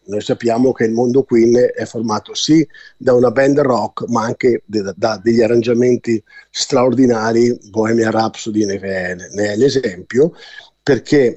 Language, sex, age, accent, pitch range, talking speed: Italian, male, 50-69, native, 115-155 Hz, 135 wpm